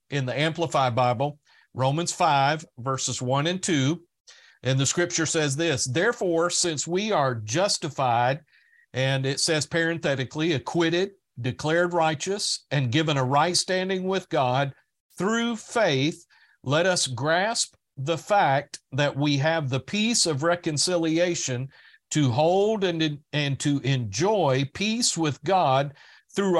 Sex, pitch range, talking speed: male, 135-180 Hz, 130 wpm